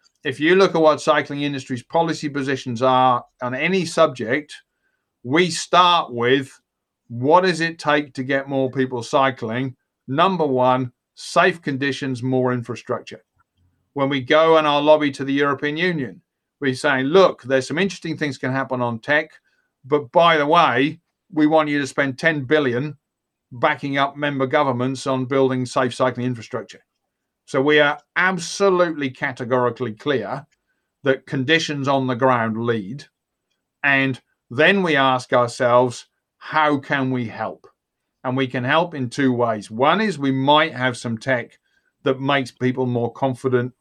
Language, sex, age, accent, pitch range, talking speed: English, male, 50-69, British, 125-150 Hz, 155 wpm